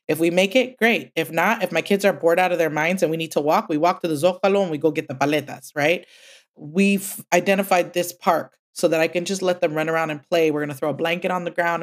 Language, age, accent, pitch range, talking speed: English, 30-49, American, 150-195 Hz, 290 wpm